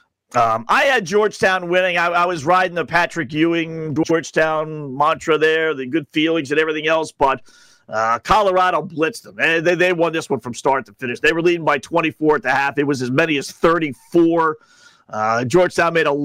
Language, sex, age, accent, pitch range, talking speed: English, male, 50-69, American, 145-185 Hz, 200 wpm